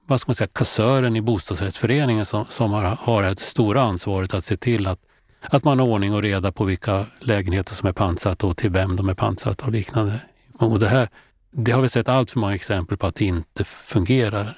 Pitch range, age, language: 100-115 Hz, 30-49, Swedish